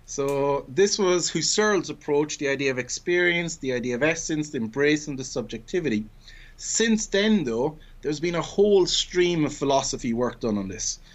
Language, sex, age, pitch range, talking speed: English, male, 30-49, 120-155 Hz, 170 wpm